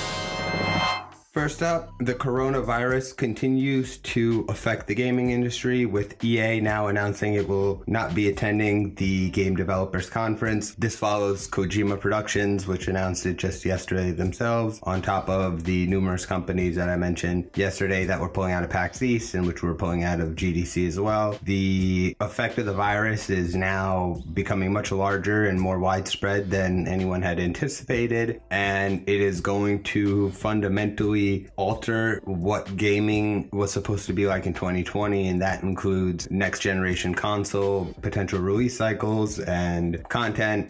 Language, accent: English, American